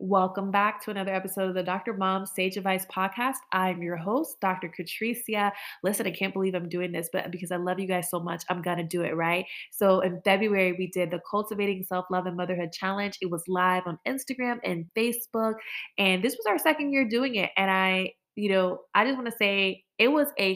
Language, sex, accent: English, female, American